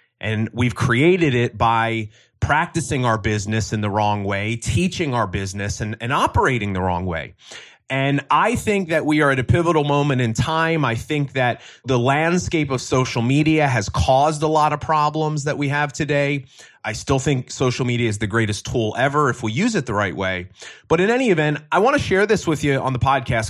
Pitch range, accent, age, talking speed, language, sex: 110-150 Hz, American, 30-49, 205 wpm, English, male